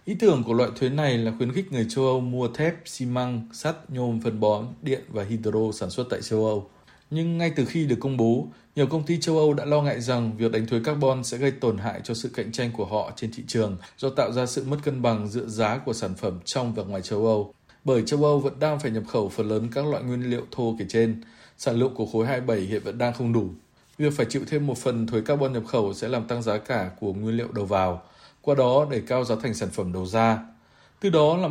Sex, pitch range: male, 115-145 Hz